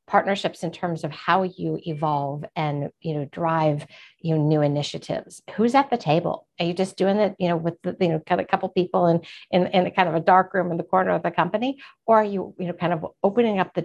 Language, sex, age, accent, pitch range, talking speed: English, female, 50-69, American, 160-190 Hz, 250 wpm